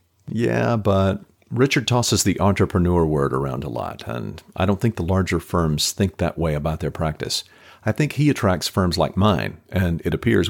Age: 50-69